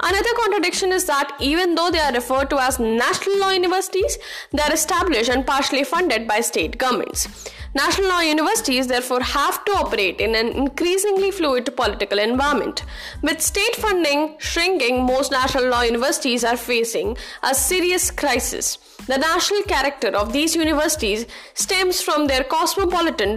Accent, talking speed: Indian, 150 wpm